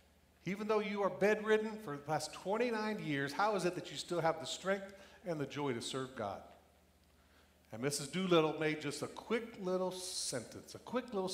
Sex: male